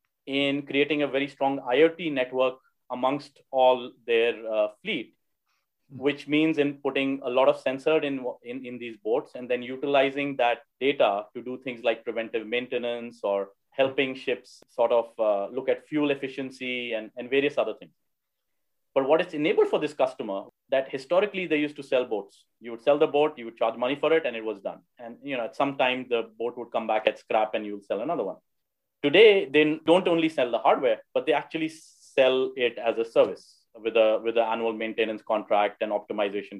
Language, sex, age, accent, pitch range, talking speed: English, male, 30-49, Indian, 120-150 Hz, 200 wpm